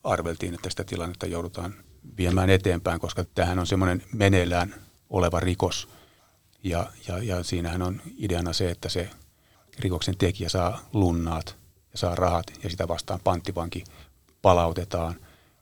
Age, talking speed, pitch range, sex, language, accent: 30-49, 135 wpm, 85-100 Hz, male, Finnish, native